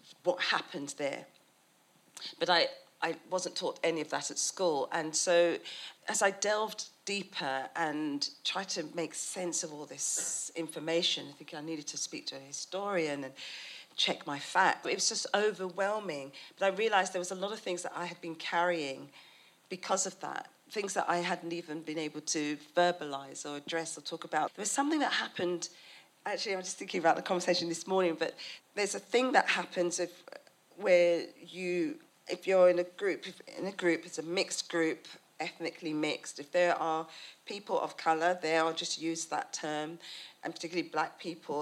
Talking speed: 190 wpm